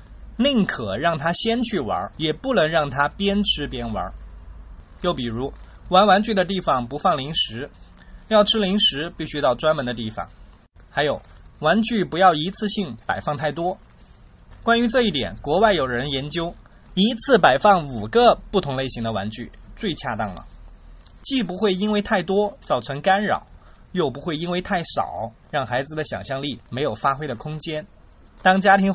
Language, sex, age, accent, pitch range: Chinese, male, 20-39, native, 115-190 Hz